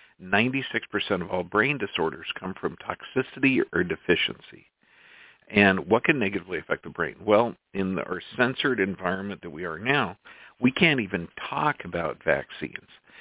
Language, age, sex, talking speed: English, 50-69, male, 140 wpm